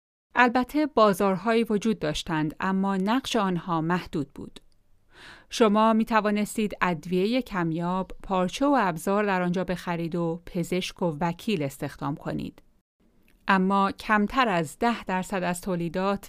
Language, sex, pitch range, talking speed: Persian, female, 170-220 Hz, 120 wpm